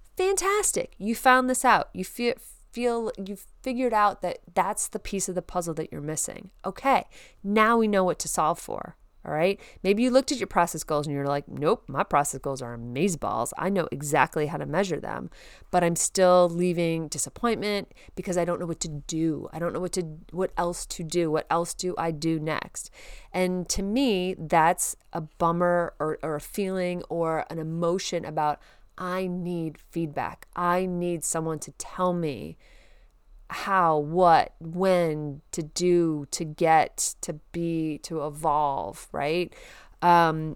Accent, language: American, English